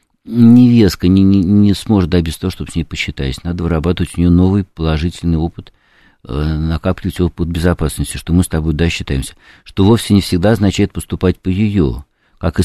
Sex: male